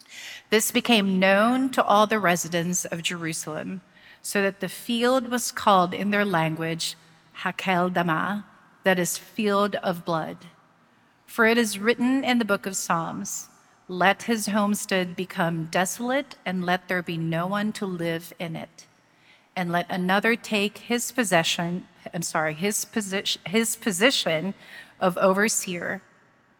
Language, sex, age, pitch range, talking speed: English, female, 40-59, 180-220 Hz, 140 wpm